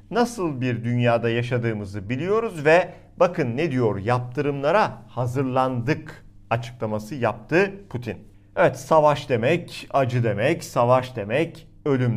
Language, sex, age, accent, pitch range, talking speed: Turkish, male, 50-69, native, 115-150 Hz, 110 wpm